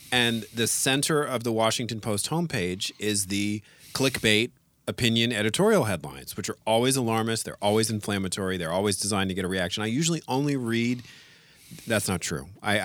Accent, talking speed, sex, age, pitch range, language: American, 165 wpm, male, 40-59, 100-125 Hz, English